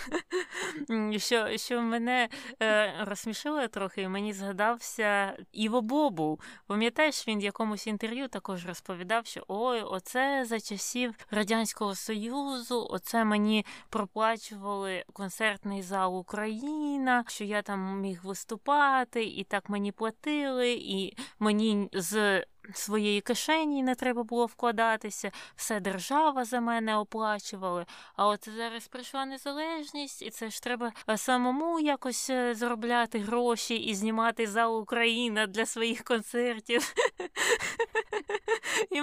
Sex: female